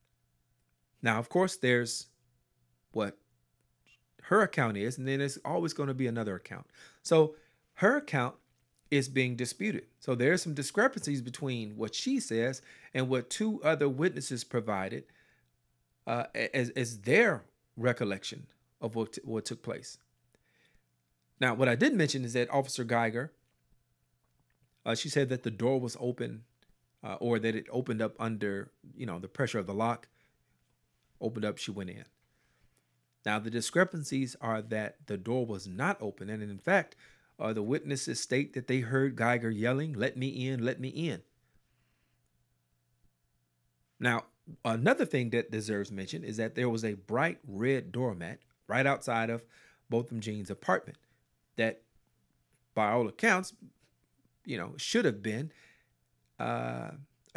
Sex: male